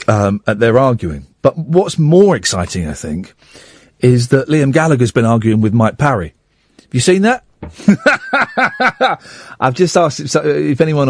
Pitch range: 105-165 Hz